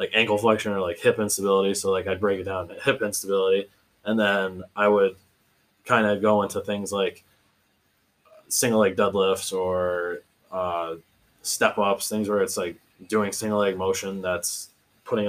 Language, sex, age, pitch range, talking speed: English, male, 20-39, 95-105 Hz, 170 wpm